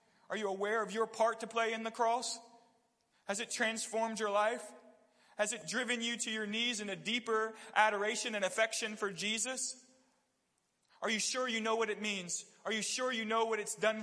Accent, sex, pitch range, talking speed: American, male, 175-220 Hz, 200 wpm